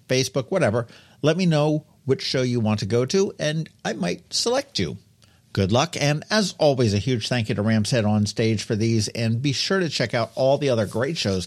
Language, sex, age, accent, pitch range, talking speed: English, male, 50-69, American, 100-145 Hz, 230 wpm